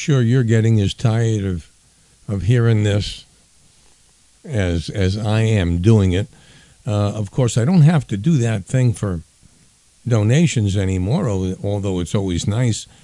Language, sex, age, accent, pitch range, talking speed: English, male, 60-79, American, 100-130 Hz, 145 wpm